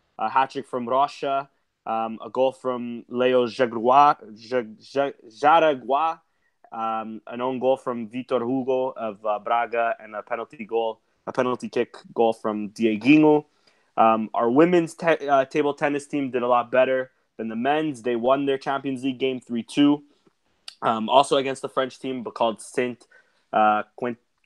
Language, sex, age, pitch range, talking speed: English, male, 20-39, 115-140 Hz, 165 wpm